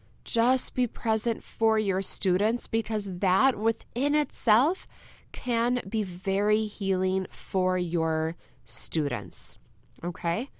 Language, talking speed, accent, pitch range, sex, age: English, 100 wpm, American, 185-245 Hz, female, 20-39